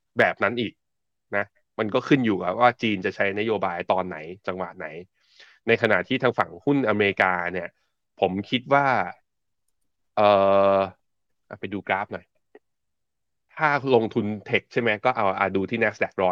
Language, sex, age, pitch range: Thai, male, 20-39, 95-115 Hz